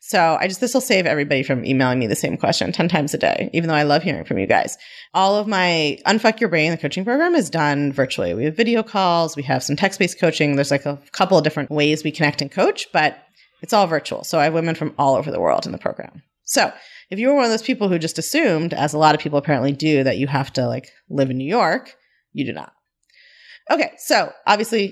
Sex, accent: female, American